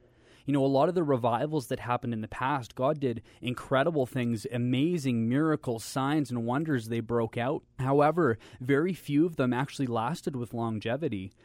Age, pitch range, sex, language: 30-49, 120-140 Hz, male, English